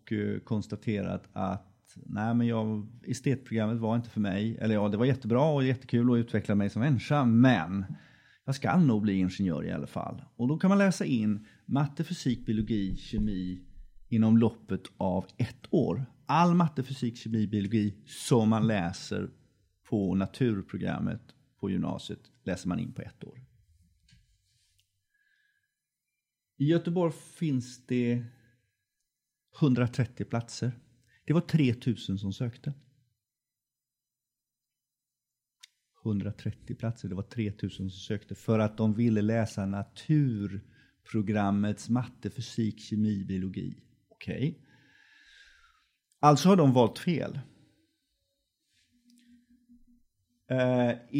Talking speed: 120 wpm